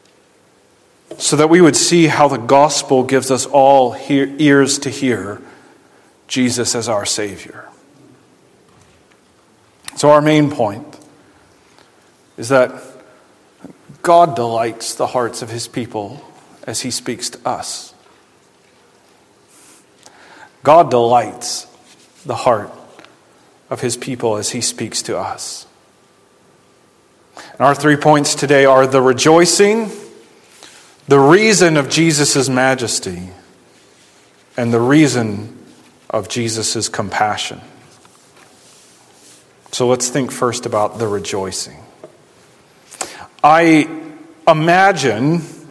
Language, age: English, 40-59